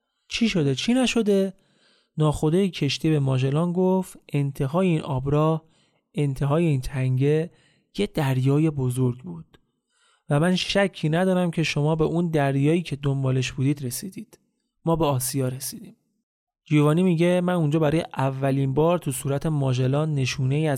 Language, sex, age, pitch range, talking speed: Persian, male, 30-49, 135-175 Hz, 140 wpm